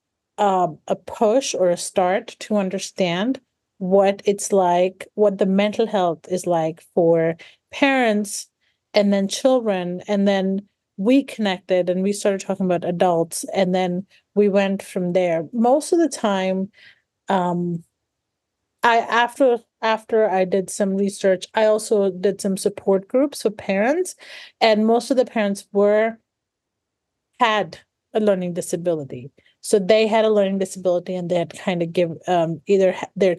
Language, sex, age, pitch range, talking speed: English, female, 30-49, 180-215 Hz, 145 wpm